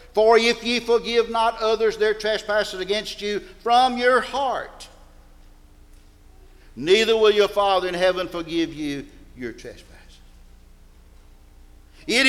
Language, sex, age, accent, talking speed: English, male, 50-69, American, 115 wpm